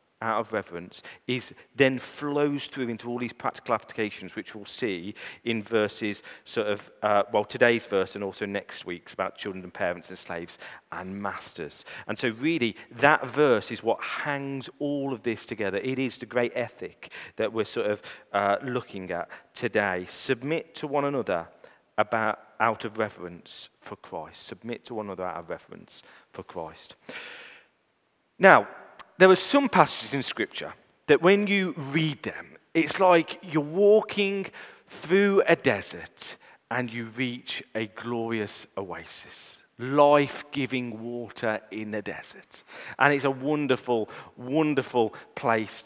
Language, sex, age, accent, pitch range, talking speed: English, male, 40-59, British, 110-160 Hz, 150 wpm